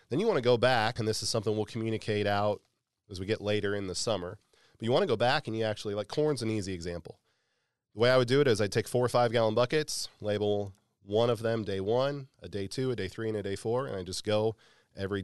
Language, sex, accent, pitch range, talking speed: English, male, American, 100-115 Hz, 270 wpm